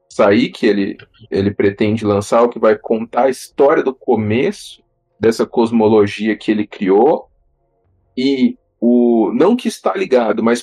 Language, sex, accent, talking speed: Portuguese, male, Brazilian, 140 wpm